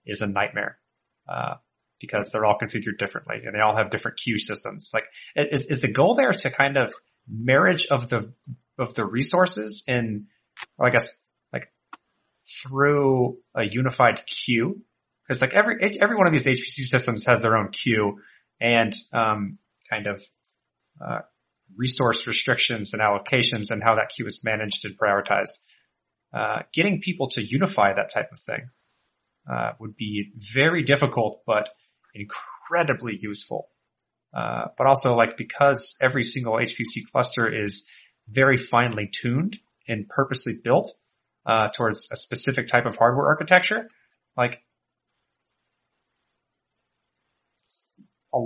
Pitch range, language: 110-135 Hz, English